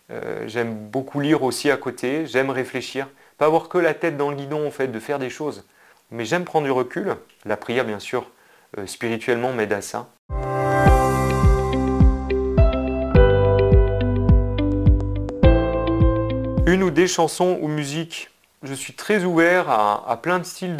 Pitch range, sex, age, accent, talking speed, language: 110-145 Hz, male, 30-49, French, 150 wpm, French